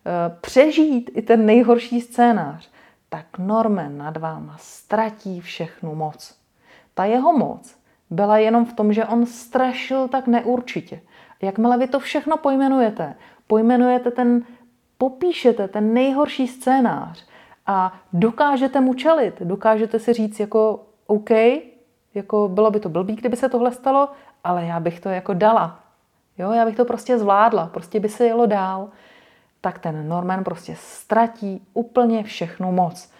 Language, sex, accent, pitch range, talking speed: Czech, female, native, 180-235 Hz, 135 wpm